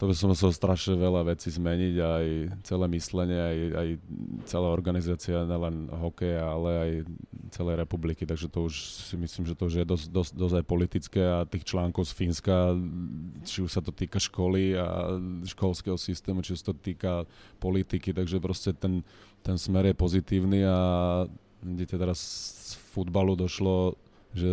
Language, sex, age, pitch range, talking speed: Slovak, male, 30-49, 85-95 Hz, 170 wpm